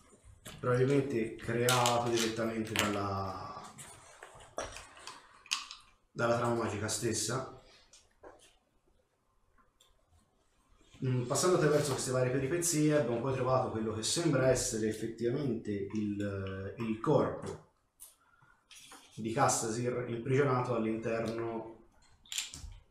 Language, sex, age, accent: Italian, male, 30-49, native